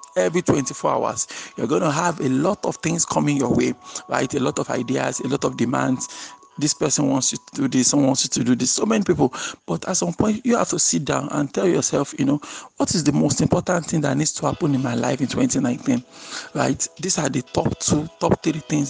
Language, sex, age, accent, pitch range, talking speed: English, male, 50-69, Nigerian, 135-180 Hz, 245 wpm